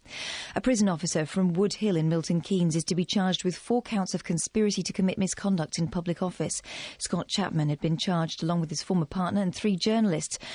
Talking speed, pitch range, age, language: 205 wpm, 165-195 Hz, 40-59, English